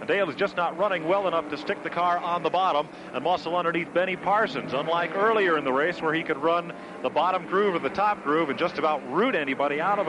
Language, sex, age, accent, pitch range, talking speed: English, male, 40-59, American, 155-190 Hz, 255 wpm